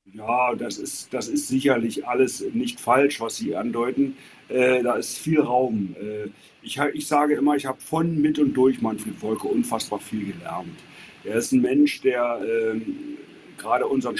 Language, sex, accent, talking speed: German, male, German, 175 wpm